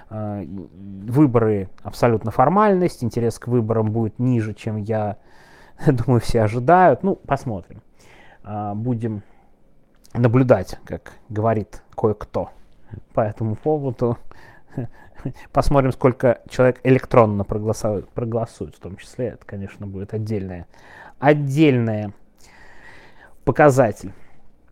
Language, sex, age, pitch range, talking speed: Russian, male, 30-49, 105-130 Hz, 90 wpm